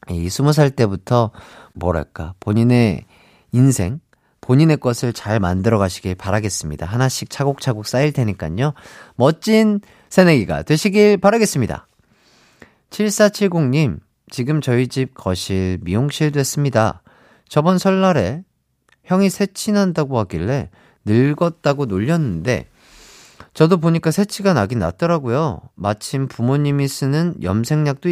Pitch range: 105-160 Hz